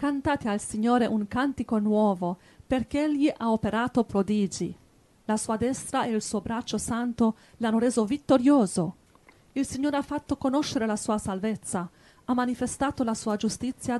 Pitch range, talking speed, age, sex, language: 205-250 Hz, 150 wpm, 40-59, female, Italian